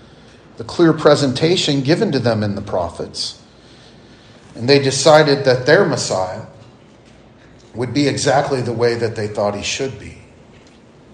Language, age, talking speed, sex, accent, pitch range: English, 40-59, 140 wpm, male, American, 125-175 Hz